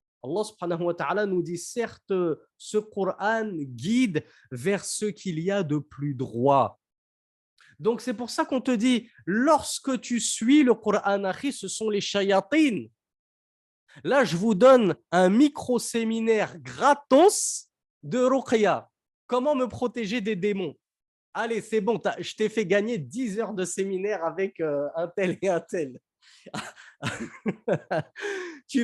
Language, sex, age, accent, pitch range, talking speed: French, male, 30-49, French, 180-245 Hz, 135 wpm